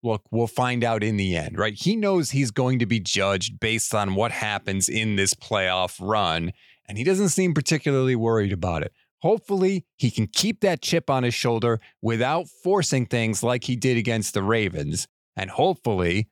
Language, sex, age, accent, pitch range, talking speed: English, male, 30-49, American, 100-130 Hz, 190 wpm